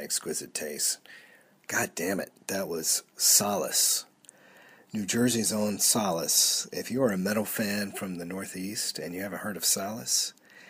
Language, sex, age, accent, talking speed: English, male, 40-59, American, 145 wpm